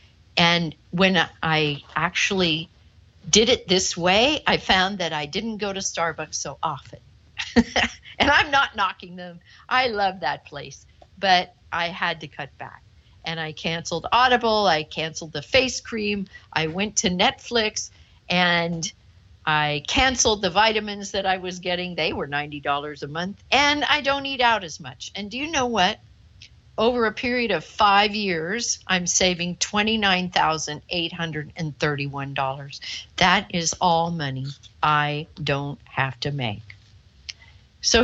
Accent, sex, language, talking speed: American, female, English, 145 wpm